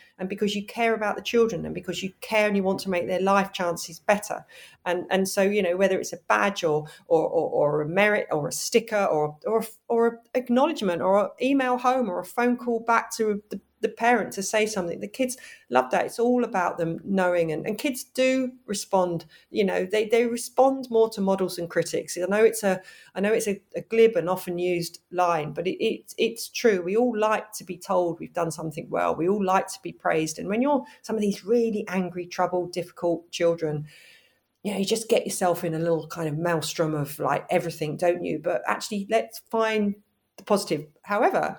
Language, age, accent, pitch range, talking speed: English, 40-59, British, 170-230 Hz, 220 wpm